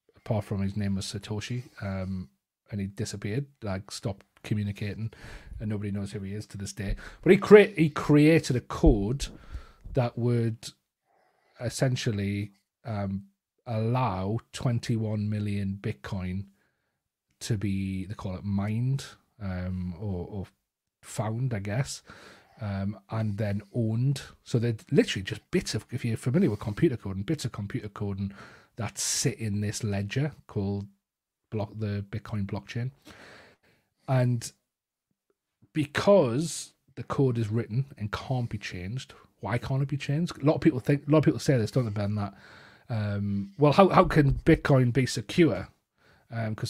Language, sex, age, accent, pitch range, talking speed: English, male, 30-49, British, 100-130 Hz, 150 wpm